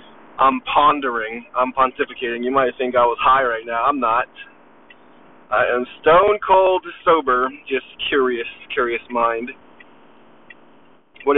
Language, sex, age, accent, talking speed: English, male, 20-39, American, 120 wpm